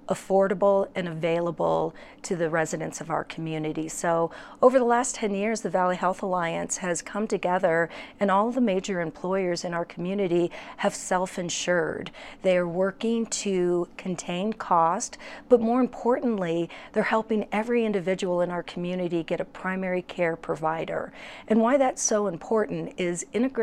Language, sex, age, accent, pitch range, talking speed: English, female, 40-59, American, 175-220 Hz, 145 wpm